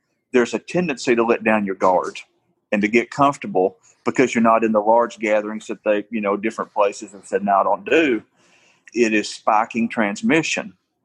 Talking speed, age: 190 wpm, 40-59